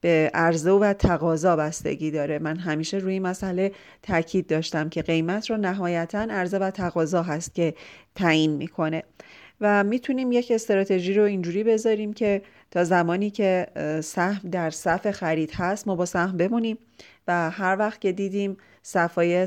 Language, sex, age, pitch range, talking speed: Persian, female, 30-49, 170-200 Hz, 150 wpm